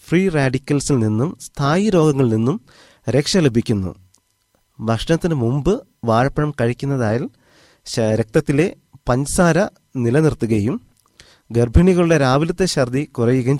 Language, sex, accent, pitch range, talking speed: Malayalam, male, native, 110-150 Hz, 85 wpm